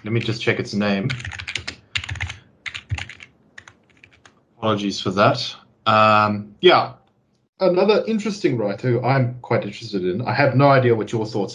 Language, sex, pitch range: English, male, 100-120 Hz